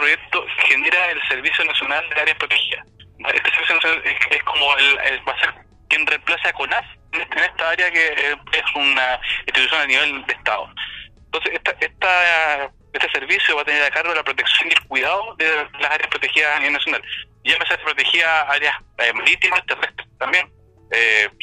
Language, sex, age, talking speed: Spanish, male, 30-49, 190 wpm